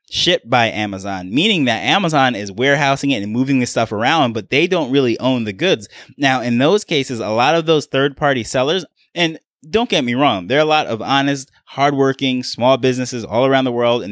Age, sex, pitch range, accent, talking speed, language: 20-39, male, 120-140 Hz, American, 215 wpm, English